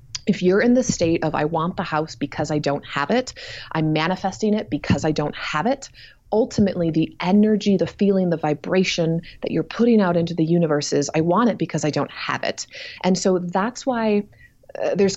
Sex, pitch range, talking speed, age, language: female, 145-190 Hz, 205 wpm, 30-49, English